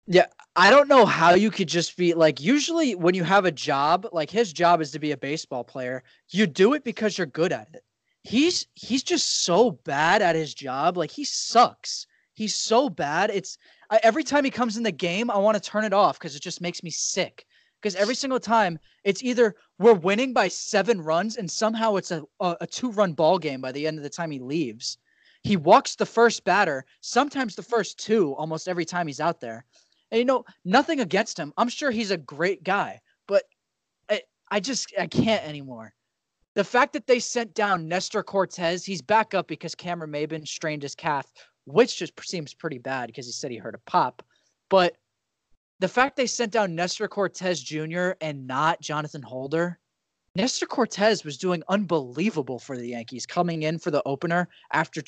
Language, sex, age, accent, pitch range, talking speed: English, male, 20-39, American, 155-220 Hz, 205 wpm